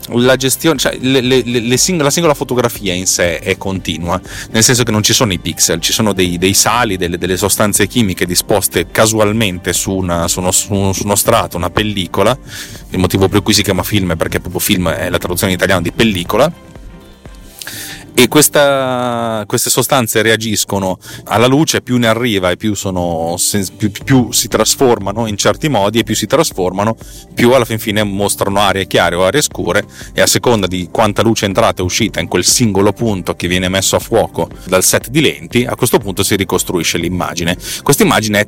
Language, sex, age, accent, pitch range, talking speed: Italian, male, 30-49, native, 95-115 Hz, 200 wpm